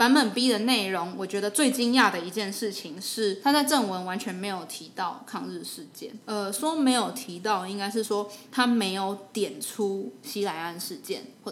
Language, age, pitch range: Chinese, 20-39, 190-235 Hz